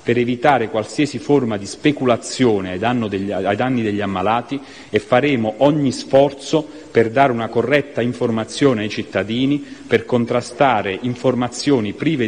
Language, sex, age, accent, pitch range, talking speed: Italian, male, 40-59, native, 110-140 Hz, 120 wpm